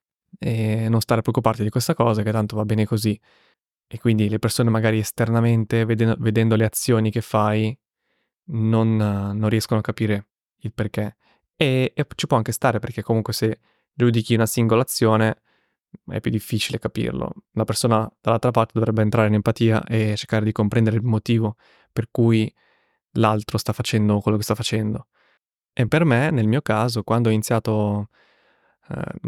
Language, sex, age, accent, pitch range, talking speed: Italian, male, 20-39, native, 110-125 Hz, 165 wpm